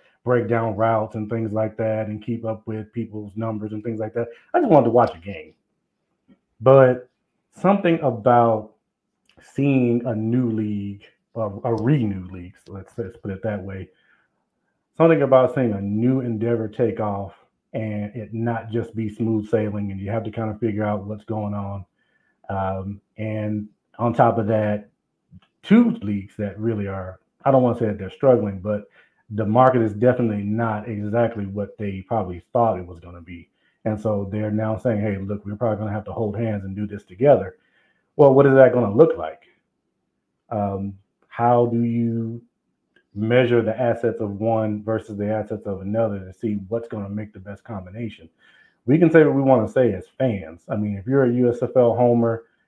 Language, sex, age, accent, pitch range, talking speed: English, male, 30-49, American, 105-120 Hz, 195 wpm